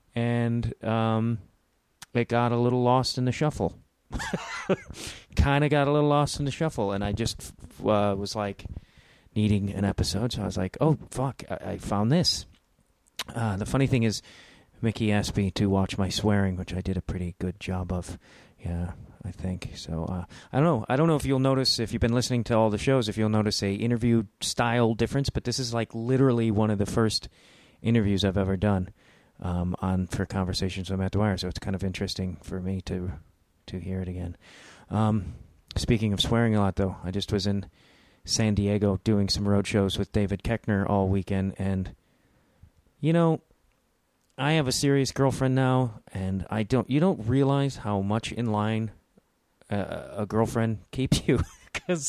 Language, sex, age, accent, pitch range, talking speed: English, male, 30-49, American, 95-125 Hz, 190 wpm